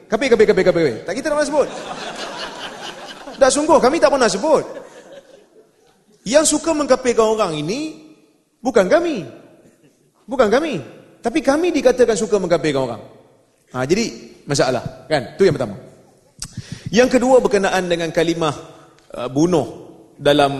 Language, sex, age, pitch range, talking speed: Malay, male, 30-49, 140-185 Hz, 130 wpm